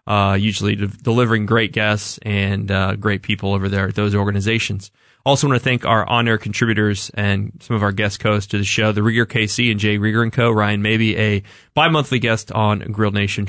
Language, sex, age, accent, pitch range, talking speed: English, male, 20-39, American, 105-115 Hz, 210 wpm